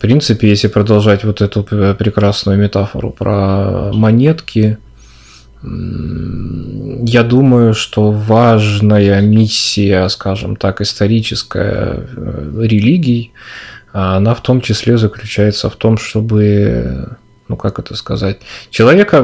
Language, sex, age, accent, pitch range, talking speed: Russian, male, 20-39, native, 105-115 Hz, 100 wpm